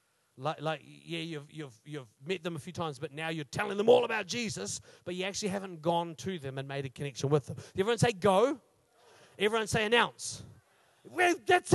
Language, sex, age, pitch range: English, male, 40-59, 155-240 Hz